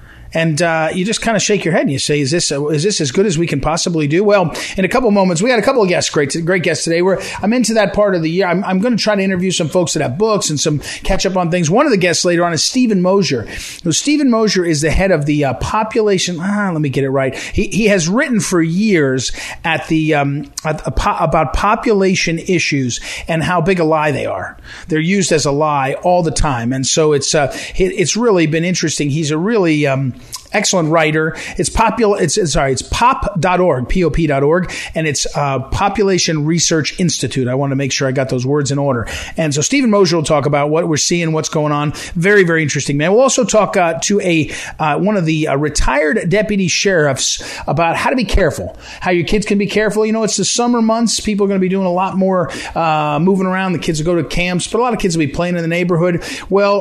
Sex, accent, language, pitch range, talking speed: male, American, English, 150-195 Hz, 255 wpm